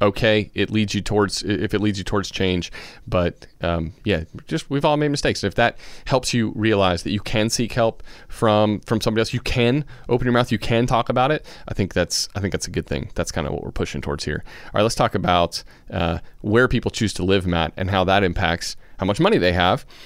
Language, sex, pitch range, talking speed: English, male, 95-120 Hz, 240 wpm